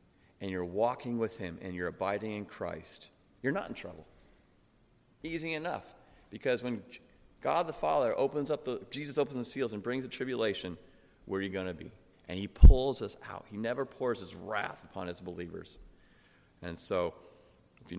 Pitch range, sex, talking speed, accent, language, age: 95-135 Hz, male, 185 wpm, American, English, 30-49